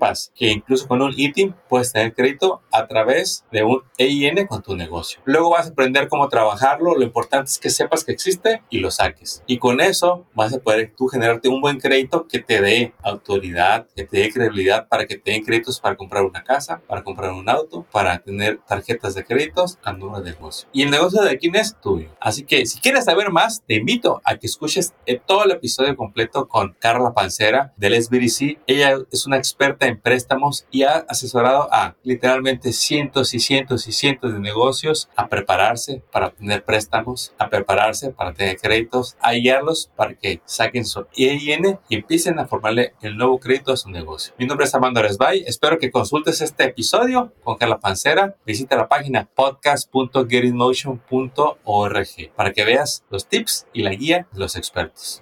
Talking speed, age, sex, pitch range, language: 185 wpm, 30-49, male, 110-145 Hz, Spanish